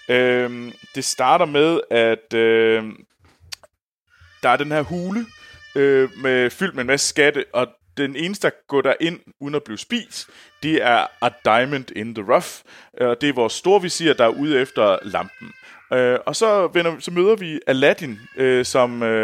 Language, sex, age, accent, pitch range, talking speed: Danish, male, 30-49, native, 120-170 Hz, 145 wpm